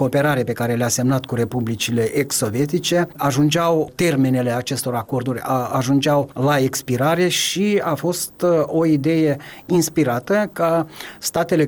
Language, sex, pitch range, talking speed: Romanian, male, 130-170 Hz, 120 wpm